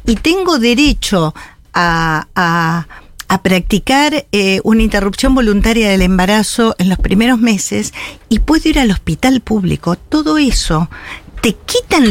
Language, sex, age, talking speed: Spanish, female, 50-69, 130 wpm